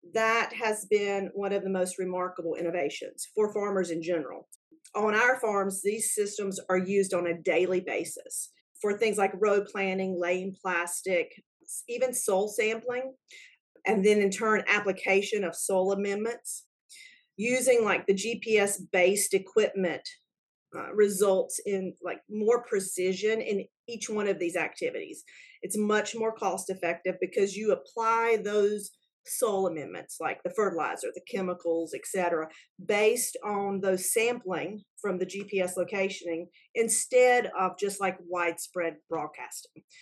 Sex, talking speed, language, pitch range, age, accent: female, 135 wpm, English, 185-245 Hz, 40-59, American